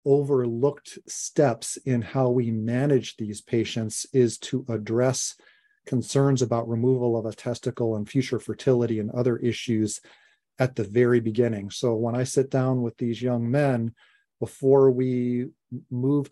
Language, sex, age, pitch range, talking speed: English, male, 40-59, 115-130 Hz, 145 wpm